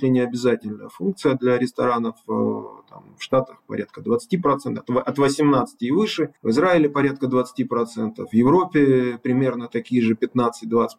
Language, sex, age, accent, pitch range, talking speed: Russian, male, 20-39, native, 120-145 Hz, 145 wpm